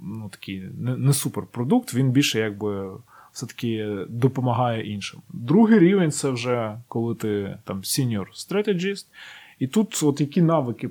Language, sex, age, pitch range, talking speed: Ukrainian, male, 20-39, 110-155 Hz, 140 wpm